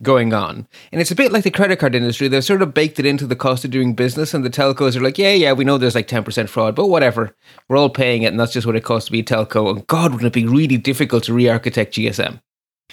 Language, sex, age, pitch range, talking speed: English, male, 30-49, 120-150 Hz, 290 wpm